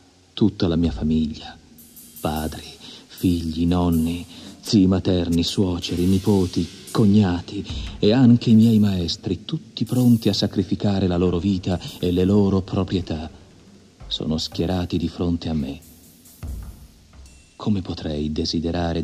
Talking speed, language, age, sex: 115 wpm, Italian, 50-69, male